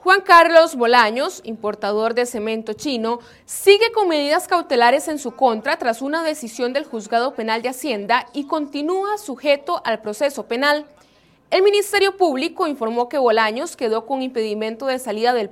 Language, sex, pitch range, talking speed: Spanish, female, 220-295 Hz, 155 wpm